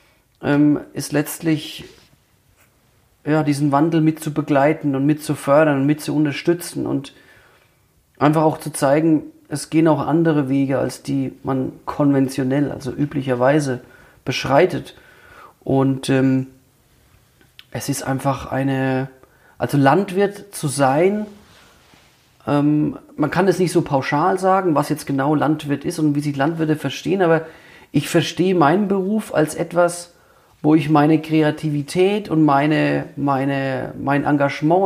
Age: 40-59